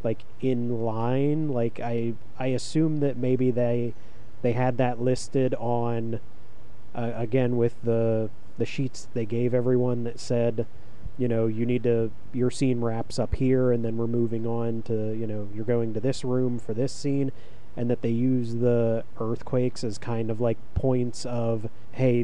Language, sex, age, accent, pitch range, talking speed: English, male, 30-49, American, 115-130 Hz, 175 wpm